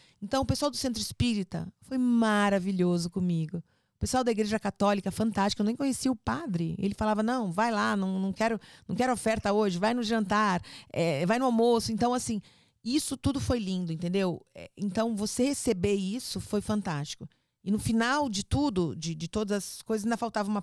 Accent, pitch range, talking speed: Brazilian, 180-225 Hz, 190 wpm